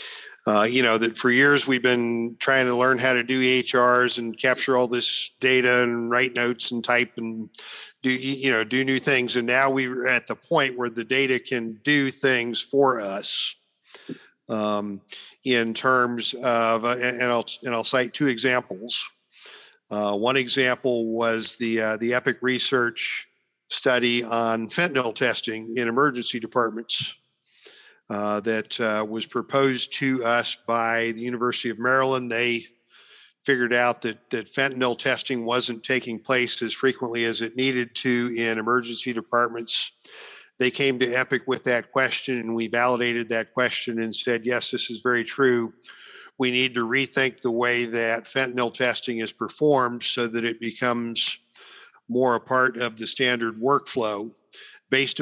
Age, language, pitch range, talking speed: 50-69, English, 115-130 Hz, 160 wpm